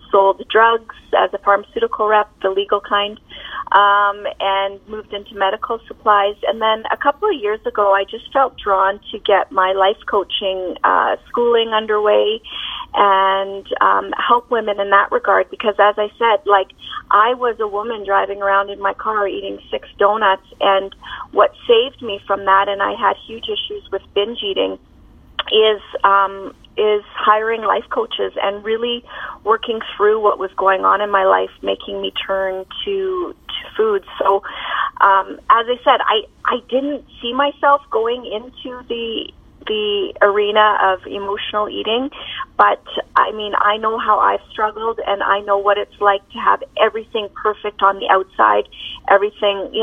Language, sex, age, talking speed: English, female, 30-49, 165 wpm